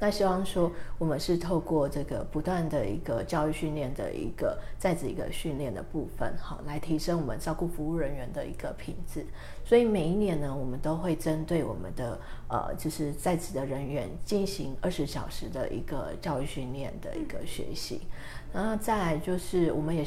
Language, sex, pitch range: Chinese, female, 150-190 Hz